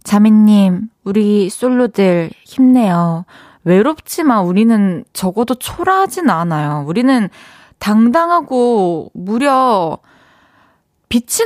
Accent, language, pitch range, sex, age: native, Korean, 185-255 Hz, female, 20-39